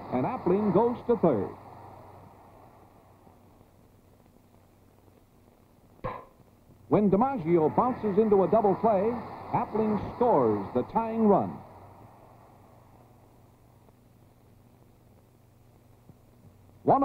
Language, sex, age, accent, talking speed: English, male, 60-79, American, 65 wpm